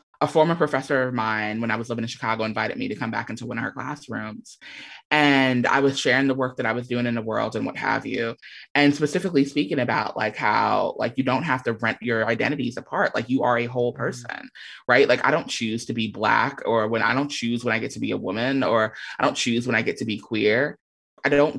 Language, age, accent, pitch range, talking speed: English, 20-39, American, 125-155 Hz, 255 wpm